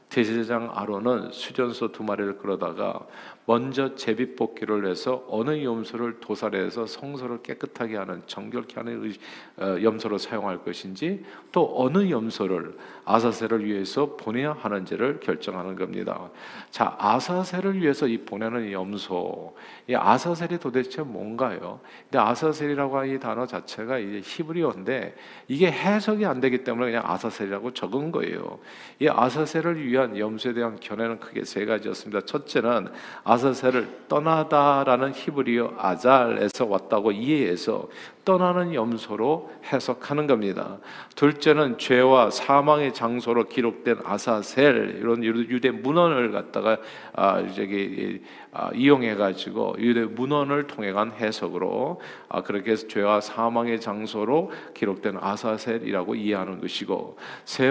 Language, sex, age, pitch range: Korean, male, 50-69, 105-140 Hz